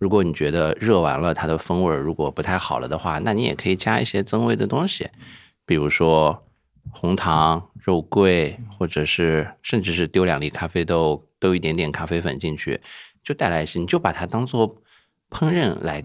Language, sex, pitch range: Chinese, male, 75-95 Hz